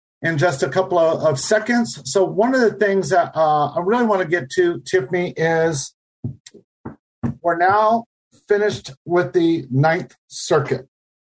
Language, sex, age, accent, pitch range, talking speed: English, male, 50-69, American, 145-180 Hz, 145 wpm